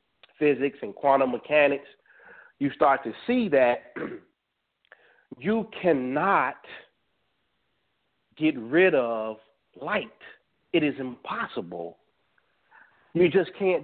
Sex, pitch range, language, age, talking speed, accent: male, 165-255 Hz, English, 40-59, 90 wpm, American